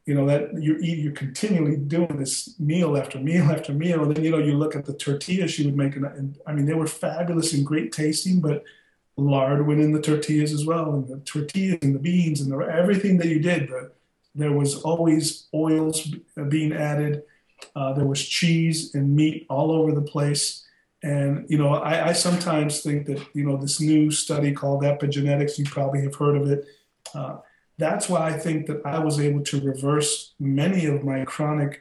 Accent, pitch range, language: American, 140-160 Hz, English